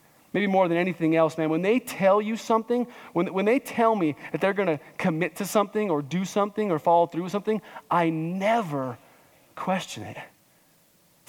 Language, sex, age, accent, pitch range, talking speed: English, male, 30-49, American, 145-190 Hz, 185 wpm